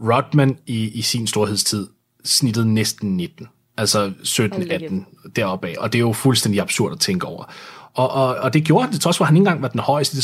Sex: male